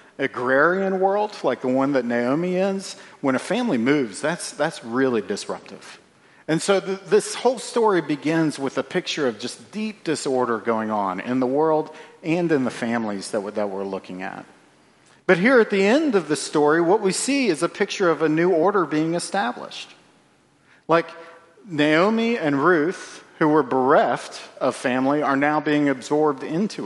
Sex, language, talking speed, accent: male, English, 175 wpm, American